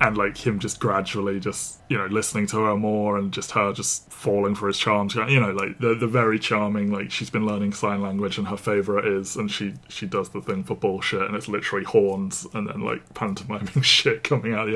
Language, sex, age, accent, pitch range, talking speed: English, male, 20-39, British, 100-110 Hz, 230 wpm